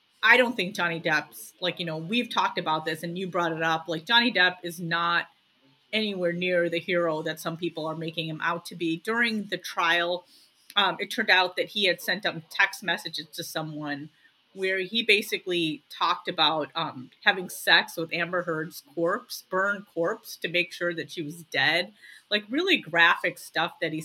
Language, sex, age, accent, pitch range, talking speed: English, female, 30-49, American, 160-200 Hz, 195 wpm